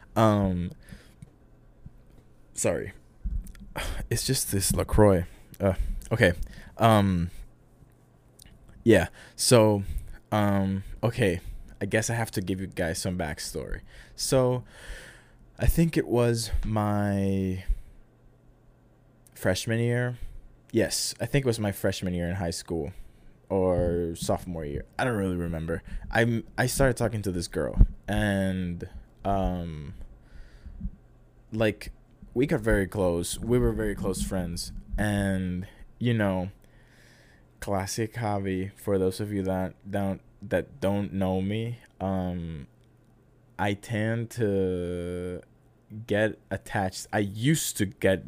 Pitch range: 90-110 Hz